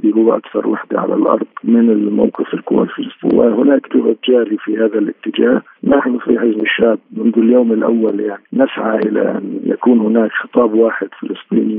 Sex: male